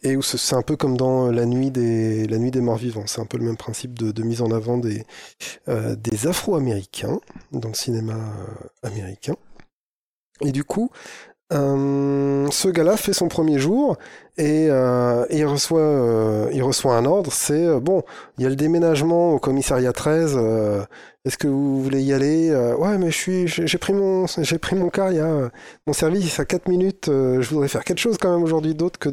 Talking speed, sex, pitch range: 210 wpm, male, 120-150 Hz